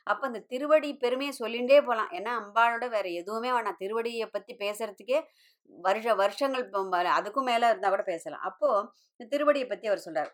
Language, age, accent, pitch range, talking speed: Tamil, 20-39, native, 190-260 Hz, 155 wpm